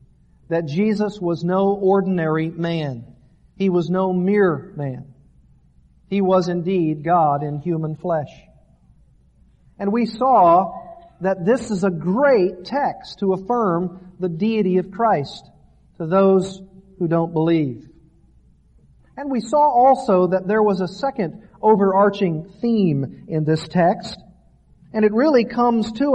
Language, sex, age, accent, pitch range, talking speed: English, male, 50-69, American, 170-220 Hz, 130 wpm